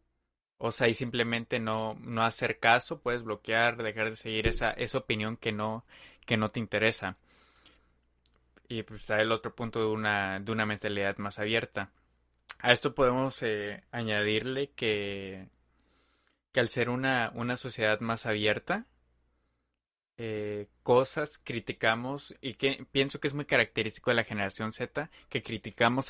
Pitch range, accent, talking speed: 105-120 Hz, Mexican, 150 wpm